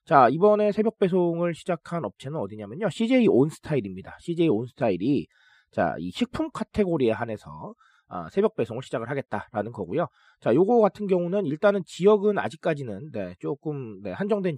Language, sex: Korean, male